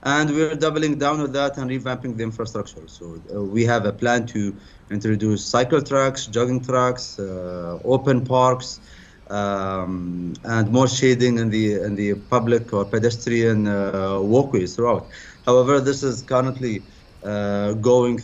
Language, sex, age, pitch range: English, male, 30-49, 105-135 Hz